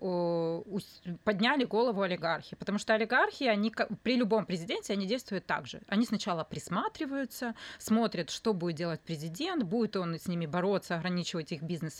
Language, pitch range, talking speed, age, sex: Russian, 175-225 Hz, 145 wpm, 20-39, female